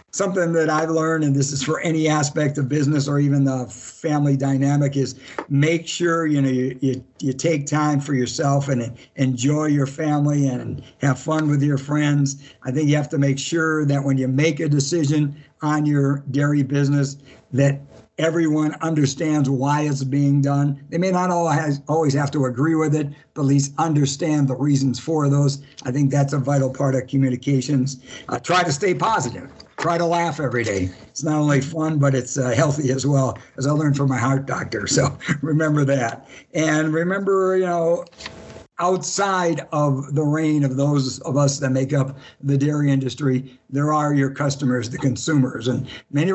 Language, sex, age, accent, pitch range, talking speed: English, male, 60-79, American, 135-155 Hz, 190 wpm